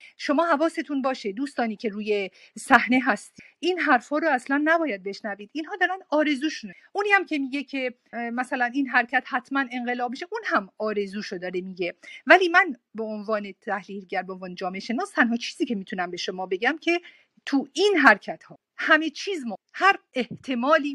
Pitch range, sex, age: 210-295 Hz, female, 50-69